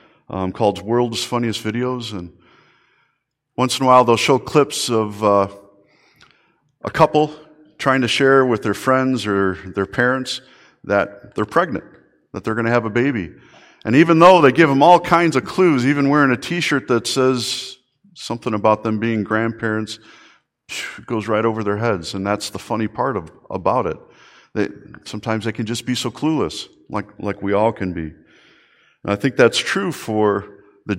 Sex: male